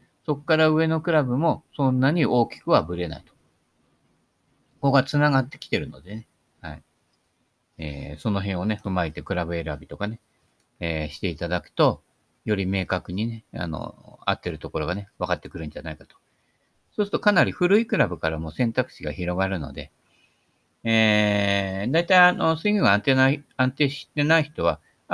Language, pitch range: Japanese, 90-145 Hz